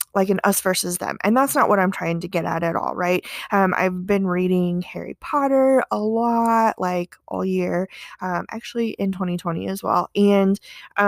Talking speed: 190 wpm